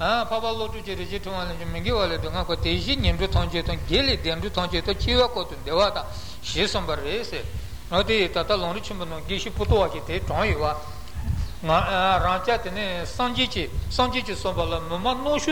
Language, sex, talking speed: Italian, male, 105 wpm